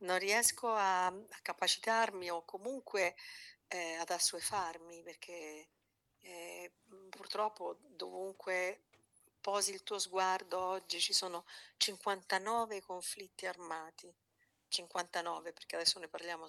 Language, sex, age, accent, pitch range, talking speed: Italian, female, 50-69, native, 160-205 Hz, 105 wpm